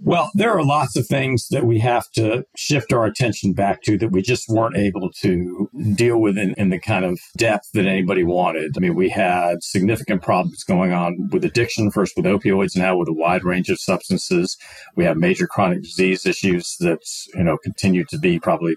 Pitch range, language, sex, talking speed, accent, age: 95-125 Hz, English, male, 200 wpm, American, 50-69